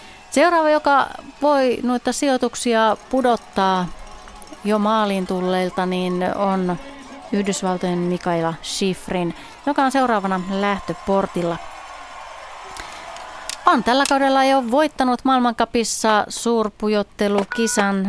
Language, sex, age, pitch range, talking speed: Finnish, female, 30-49, 185-245 Hz, 85 wpm